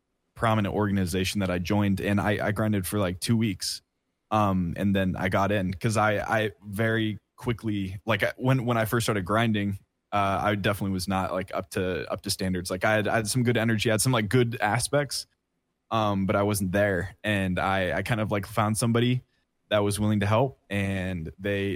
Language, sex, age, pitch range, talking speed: English, male, 20-39, 95-110 Hz, 210 wpm